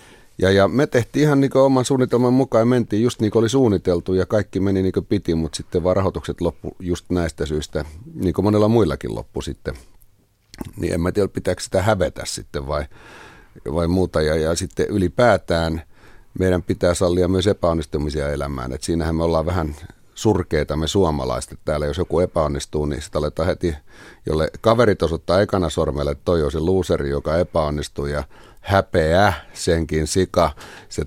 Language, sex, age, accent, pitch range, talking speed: Finnish, male, 30-49, native, 80-95 Hz, 170 wpm